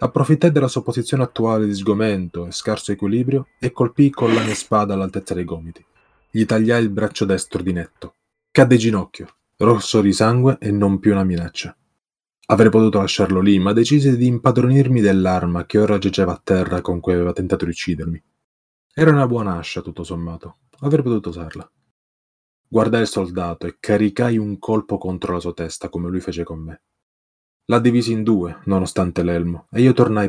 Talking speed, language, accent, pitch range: 180 wpm, Italian, native, 90-115 Hz